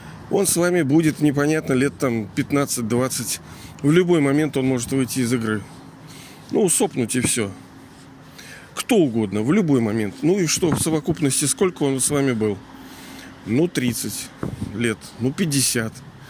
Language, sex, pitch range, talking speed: Russian, male, 115-145 Hz, 145 wpm